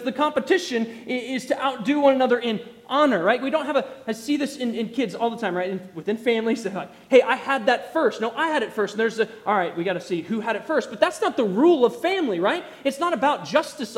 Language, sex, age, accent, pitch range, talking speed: English, male, 20-39, American, 220-280 Hz, 265 wpm